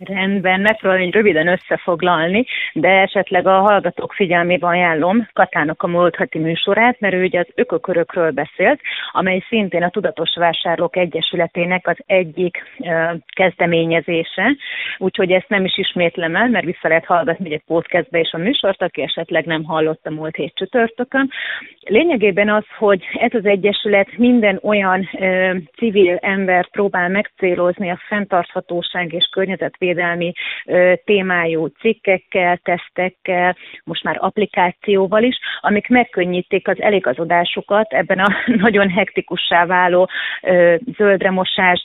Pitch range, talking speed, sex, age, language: 175-200 Hz, 125 wpm, female, 30-49, Hungarian